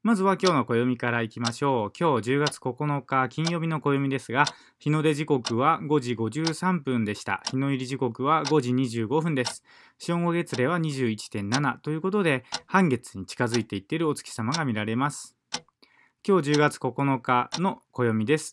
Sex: male